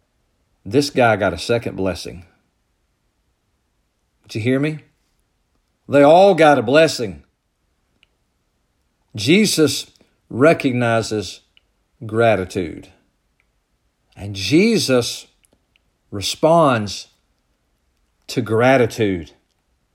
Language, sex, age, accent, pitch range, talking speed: English, male, 50-69, American, 100-135 Hz, 70 wpm